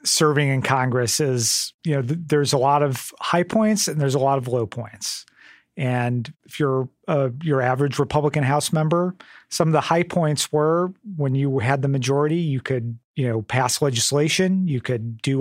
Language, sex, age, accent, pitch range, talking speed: English, male, 40-59, American, 125-150 Hz, 185 wpm